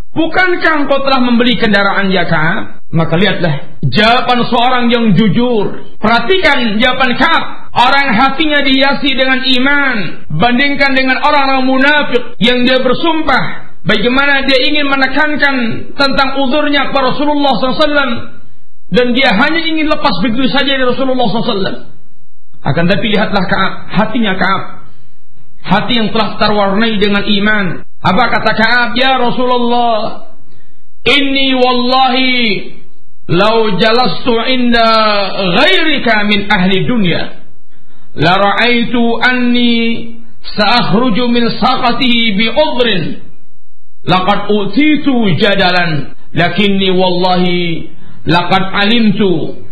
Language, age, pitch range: Malay, 50-69, 200-260 Hz